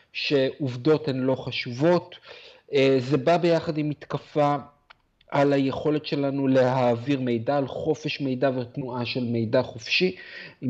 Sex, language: male, Hebrew